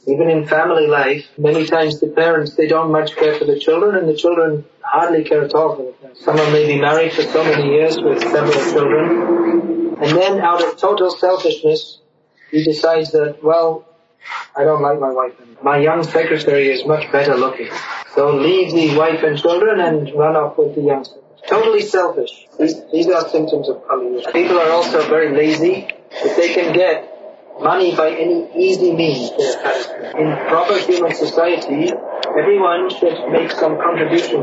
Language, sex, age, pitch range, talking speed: English, male, 30-49, 155-190 Hz, 180 wpm